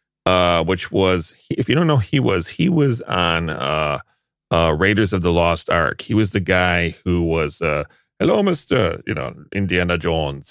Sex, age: male, 30-49